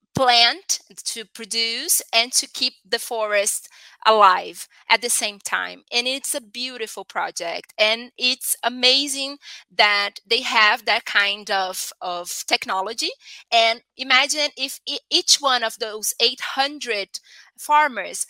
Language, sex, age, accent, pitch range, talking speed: English, female, 20-39, Brazilian, 215-275 Hz, 125 wpm